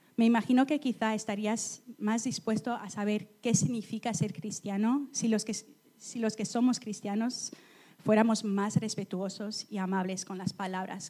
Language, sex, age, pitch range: Spanish, female, 30-49, 195-235 Hz